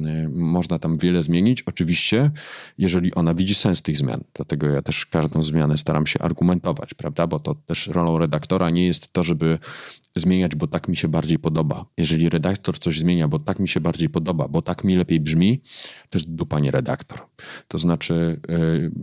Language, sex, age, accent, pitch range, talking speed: Polish, male, 30-49, native, 80-95 Hz, 185 wpm